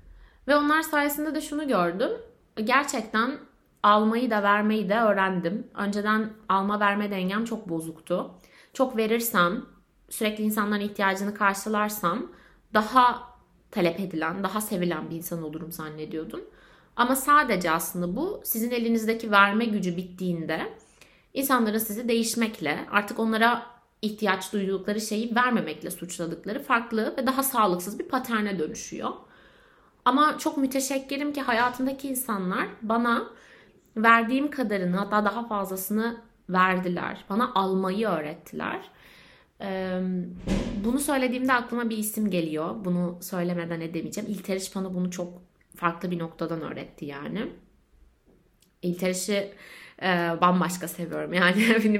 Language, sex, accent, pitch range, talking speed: Turkish, female, native, 180-235 Hz, 110 wpm